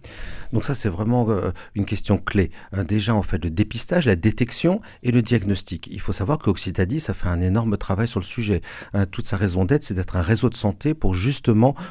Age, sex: 50-69, male